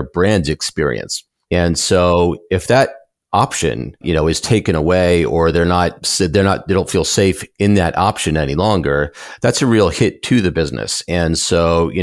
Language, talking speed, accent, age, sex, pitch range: English, 180 wpm, American, 40-59, male, 80-90 Hz